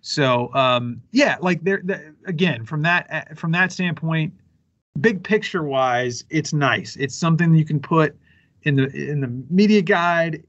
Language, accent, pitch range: English, American, 125-155 Hz